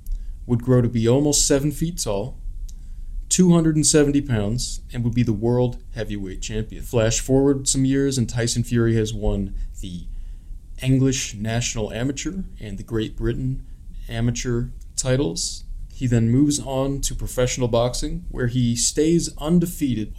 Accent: American